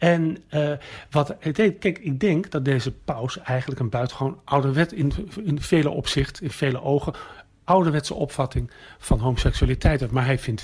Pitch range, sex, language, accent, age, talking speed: 125-155 Hz, male, Dutch, Dutch, 40-59, 160 wpm